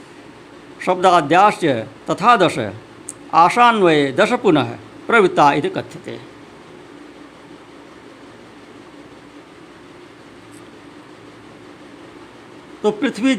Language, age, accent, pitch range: Hindi, 60-79, native, 160-245 Hz